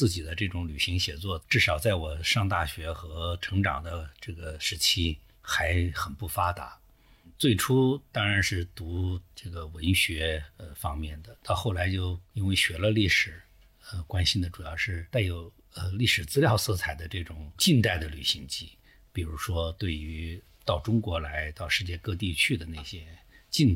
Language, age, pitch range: Chinese, 50-69, 85-110 Hz